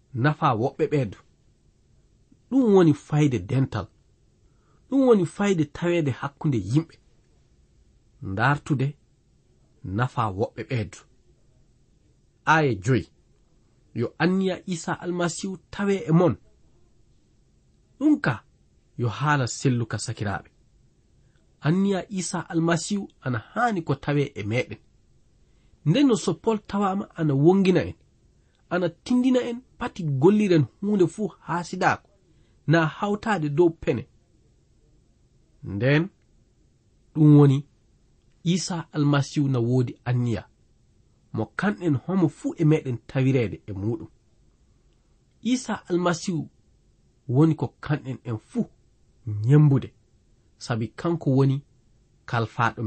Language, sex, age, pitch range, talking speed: French, male, 40-59, 115-175 Hz, 95 wpm